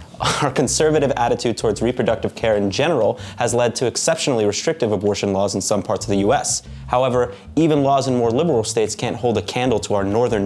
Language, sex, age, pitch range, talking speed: English, male, 20-39, 105-140 Hz, 200 wpm